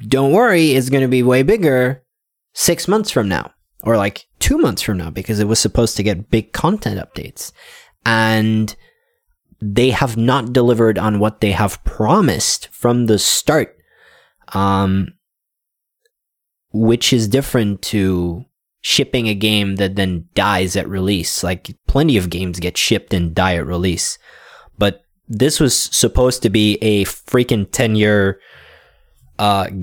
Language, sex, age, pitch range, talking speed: English, male, 20-39, 95-125 Hz, 145 wpm